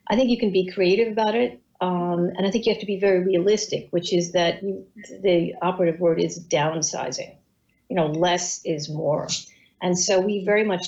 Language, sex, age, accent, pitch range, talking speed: English, female, 50-69, American, 170-210 Hz, 200 wpm